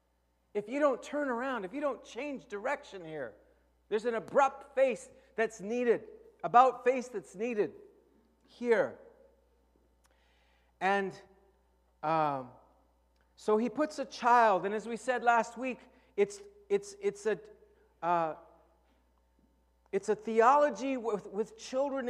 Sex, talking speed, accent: male, 125 wpm, American